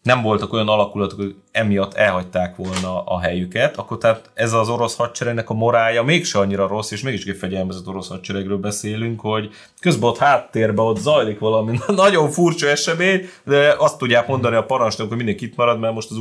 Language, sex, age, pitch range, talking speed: Hungarian, male, 30-49, 100-125 Hz, 180 wpm